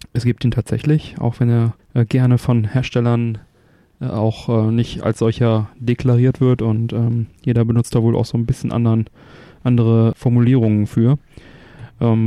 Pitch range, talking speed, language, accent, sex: 110-135 Hz, 165 wpm, German, German, male